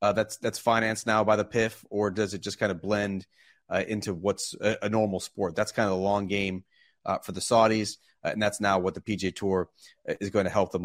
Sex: male